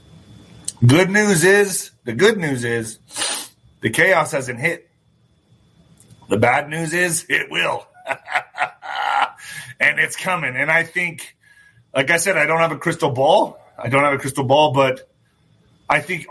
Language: English